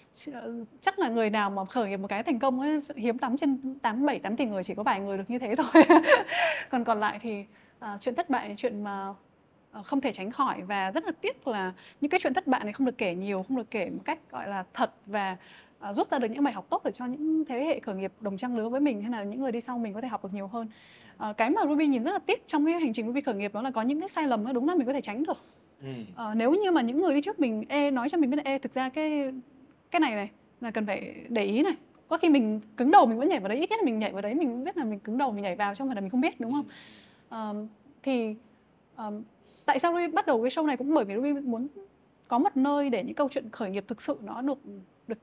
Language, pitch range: Vietnamese, 215-290 Hz